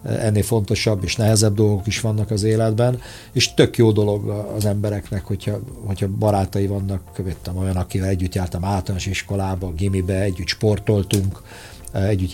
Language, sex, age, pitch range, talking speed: Hungarian, male, 50-69, 95-115 Hz, 145 wpm